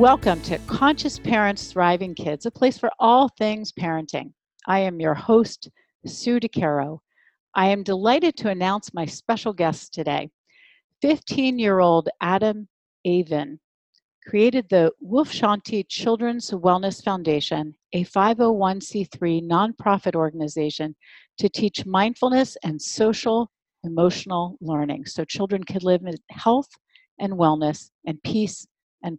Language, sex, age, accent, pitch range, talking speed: English, female, 50-69, American, 170-225 Hz, 125 wpm